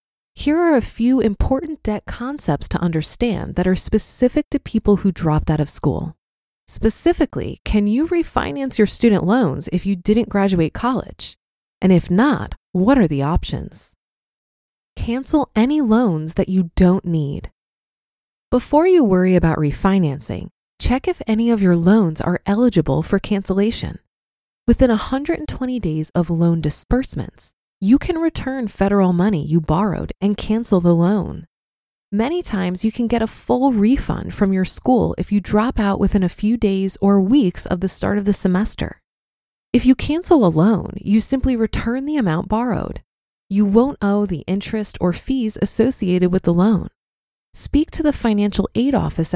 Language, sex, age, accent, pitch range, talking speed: English, female, 20-39, American, 185-250 Hz, 160 wpm